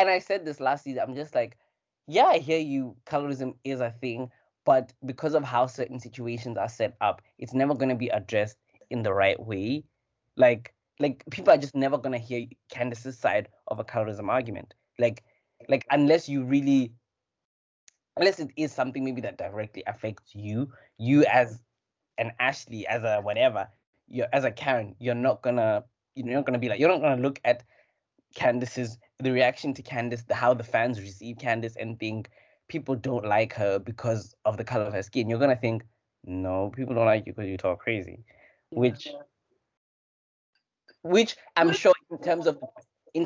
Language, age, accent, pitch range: English, 20-39, South African, 110-135 Hz